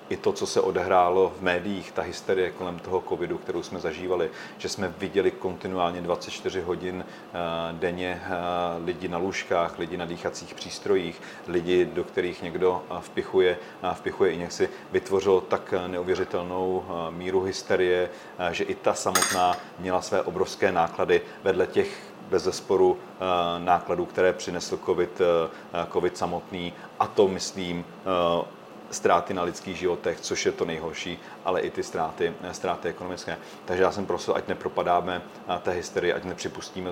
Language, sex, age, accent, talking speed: Czech, male, 40-59, native, 145 wpm